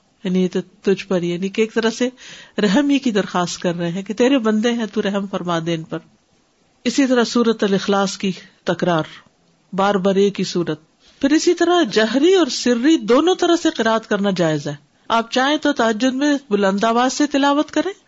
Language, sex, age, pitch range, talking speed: Urdu, female, 50-69, 195-255 Hz, 165 wpm